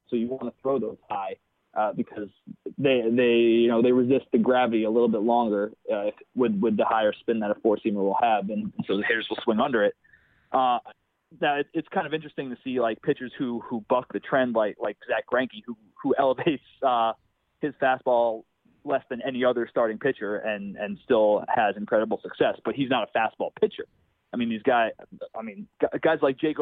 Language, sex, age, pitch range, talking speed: English, male, 20-39, 115-150 Hz, 210 wpm